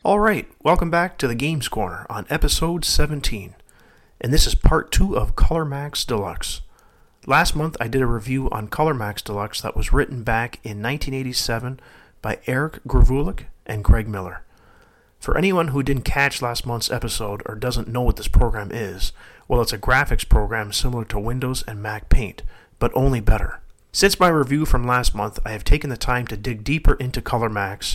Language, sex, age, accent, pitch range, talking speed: English, male, 40-59, American, 105-130 Hz, 185 wpm